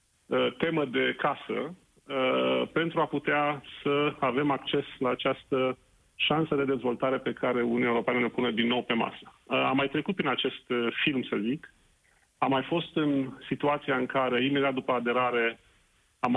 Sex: male